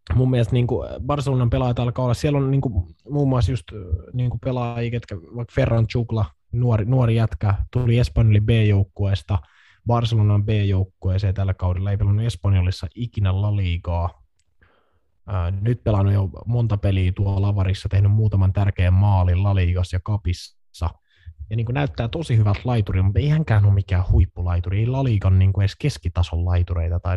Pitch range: 90-115 Hz